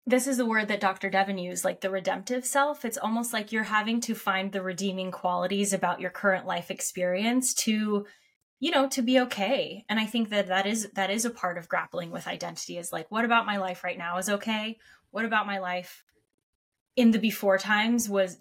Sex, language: female, English